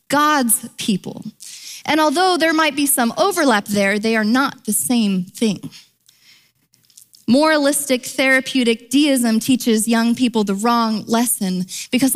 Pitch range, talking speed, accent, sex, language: 210-270 Hz, 130 wpm, American, female, English